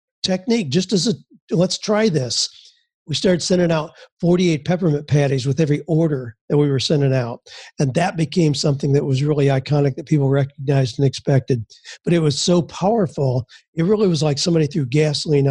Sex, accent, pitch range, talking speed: male, American, 145-180 Hz, 180 wpm